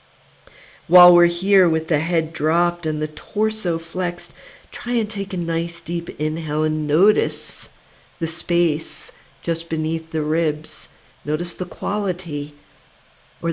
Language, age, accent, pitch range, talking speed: English, 50-69, American, 150-180 Hz, 135 wpm